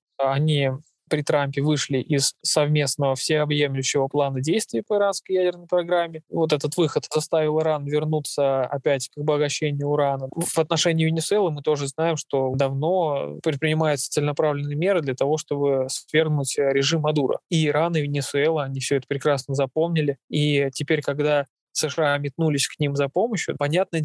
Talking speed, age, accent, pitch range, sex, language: 145 wpm, 20-39, native, 140-160 Hz, male, Russian